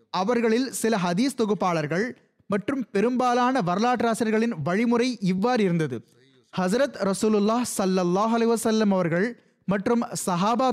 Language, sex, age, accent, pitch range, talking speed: Tamil, male, 20-39, native, 190-235 Hz, 95 wpm